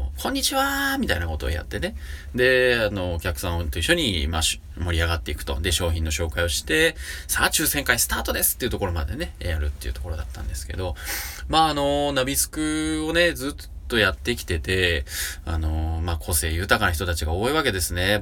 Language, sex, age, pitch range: Japanese, male, 20-39, 75-110 Hz